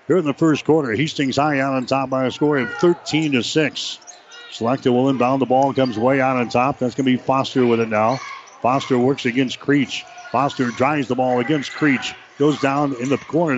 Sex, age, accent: male, 60-79, American